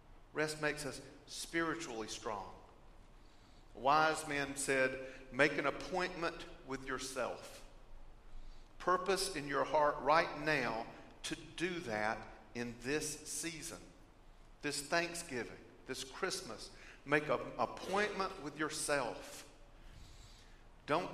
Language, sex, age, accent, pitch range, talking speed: English, male, 50-69, American, 120-180 Hz, 100 wpm